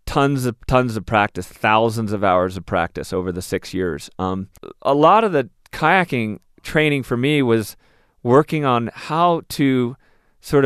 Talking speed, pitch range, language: 165 wpm, 115-145 Hz, English